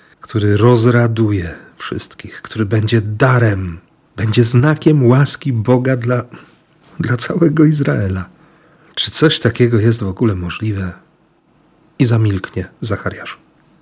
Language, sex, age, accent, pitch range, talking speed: Polish, male, 40-59, native, 105-150 Hz, 105 wpm